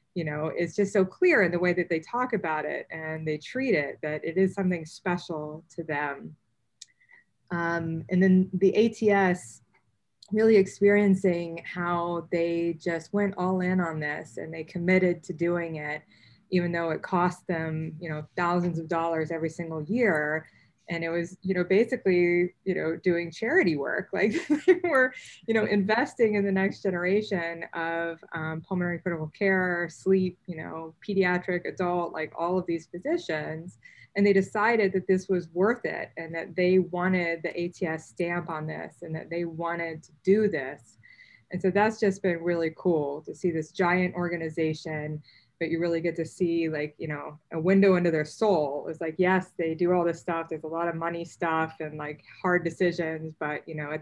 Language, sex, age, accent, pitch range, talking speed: English, female, 20-39, American, 160-185 Hz, 185 wpm